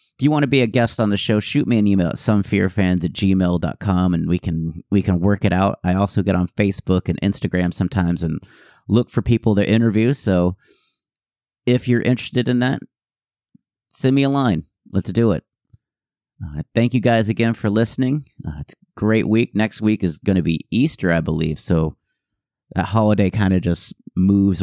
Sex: male